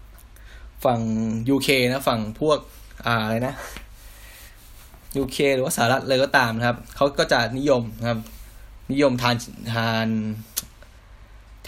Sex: male